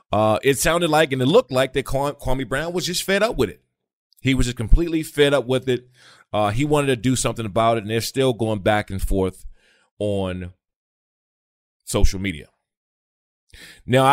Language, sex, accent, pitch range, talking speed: English, male, American, 100-130 Hz, 185 wpm